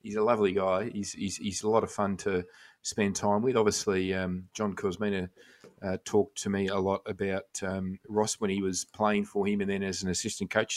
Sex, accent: male, Australian